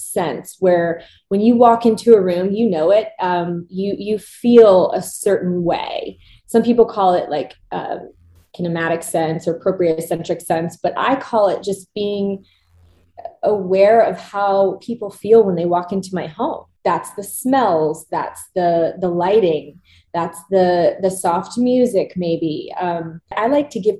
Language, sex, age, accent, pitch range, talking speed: English, female, 20-39, American, 170-230 Hz, 160 wpm